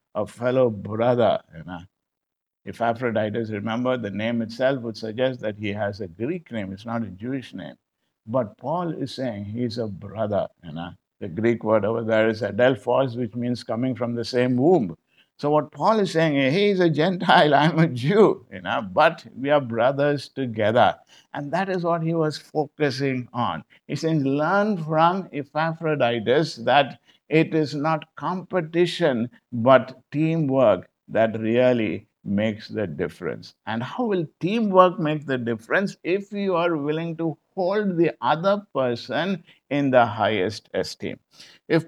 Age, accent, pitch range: 60-79, Indian, 115-160 Hz